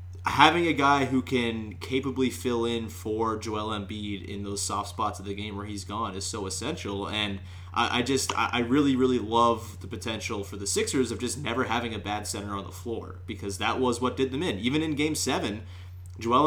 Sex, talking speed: male, 215 wpm